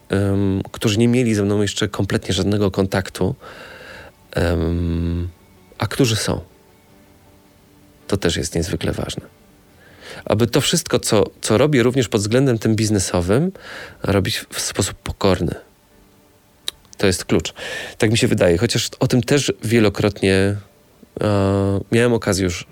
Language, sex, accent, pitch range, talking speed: Polish, male, native, 95-115 Hz, 125 wpm